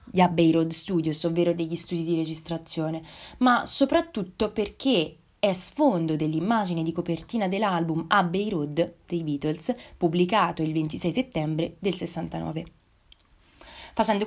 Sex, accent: female, native